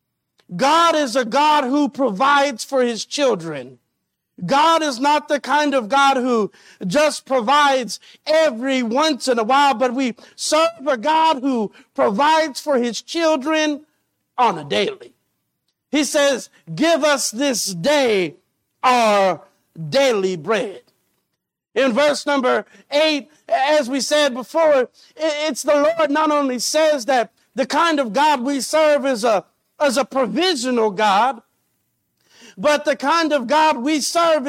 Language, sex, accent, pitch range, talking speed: English, male, American, 255-305 Hz, 140 wpm